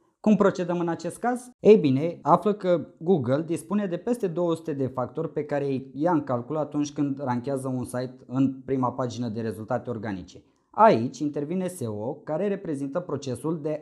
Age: 20-39